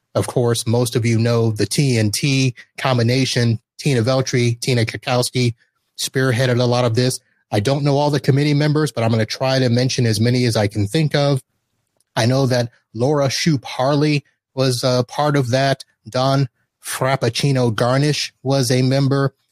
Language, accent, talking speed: English, American, 170 wpm